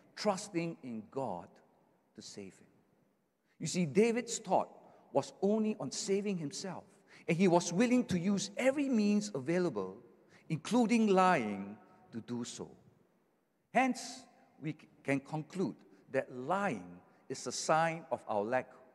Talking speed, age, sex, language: 130 wpm, 50-69, male, English